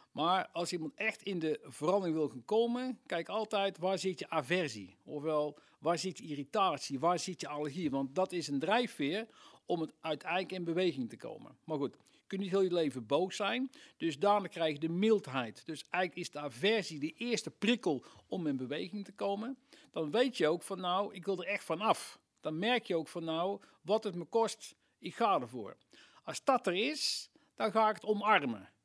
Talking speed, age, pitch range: 210 wpm, 60-79, 160-220 Hz